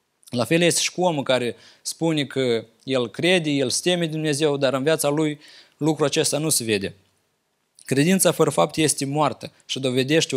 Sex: male